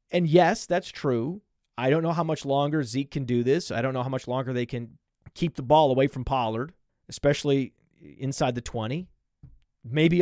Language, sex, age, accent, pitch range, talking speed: English, male, 30-49, American, 125-165 Hz, 195 wpm